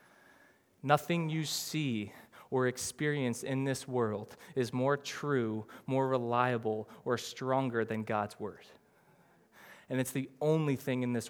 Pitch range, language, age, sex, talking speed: 130-165 Hz, English, 20-39, male, 135 wpm